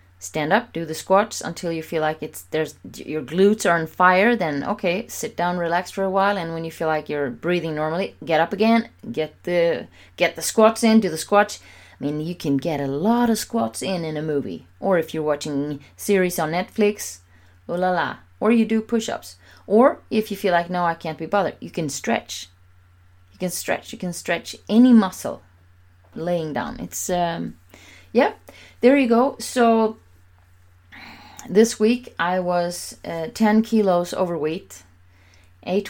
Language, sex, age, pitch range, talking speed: English, female, 30-49, 145-195 Hz, 185 wpm